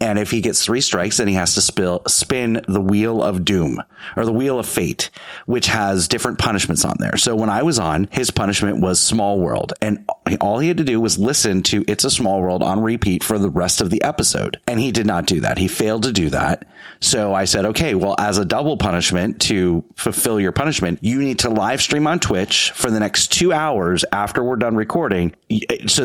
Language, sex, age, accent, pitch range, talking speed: English, male, 30-49, American, 95-115 Hz, 225 wpm